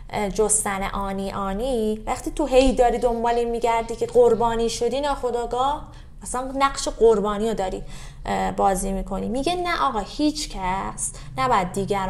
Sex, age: female, 20-39